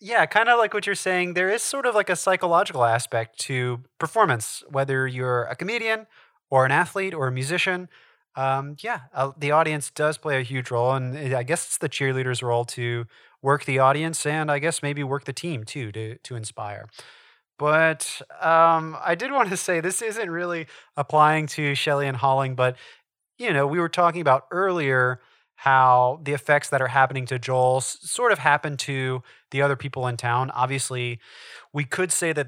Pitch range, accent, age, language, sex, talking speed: 125-155 Hz, American, 30-49, English, male, 190 wpm